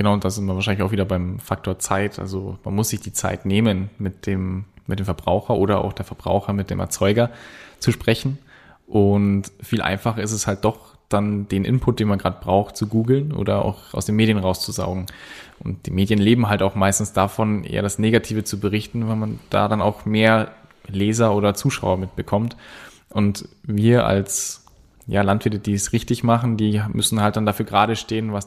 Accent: German